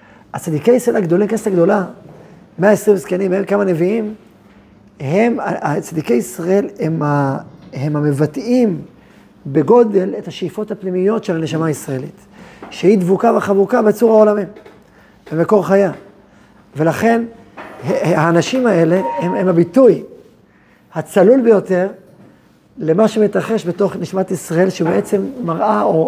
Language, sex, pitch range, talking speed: Hebrew, male, 170-220 Hz, 105 wpm